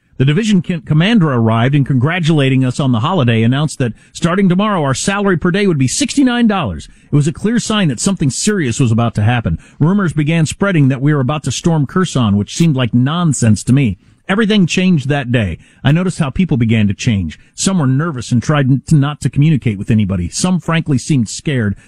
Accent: American